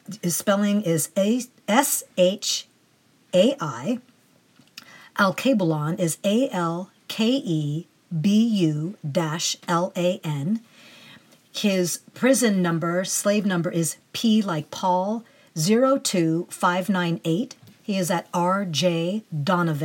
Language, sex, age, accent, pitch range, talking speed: English, female, 50-69, American, 165-215 Hz, 50 wpm